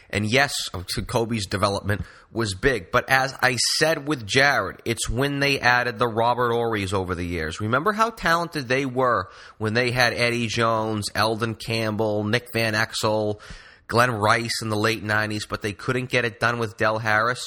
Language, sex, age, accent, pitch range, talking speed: English, male, 30-49, American, 100-115 Hz, 180 wpm